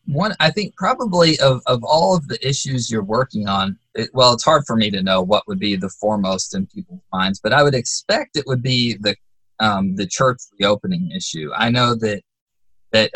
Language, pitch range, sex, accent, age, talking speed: English, 105-150 Hz, male, American, 20-39, 210 wpm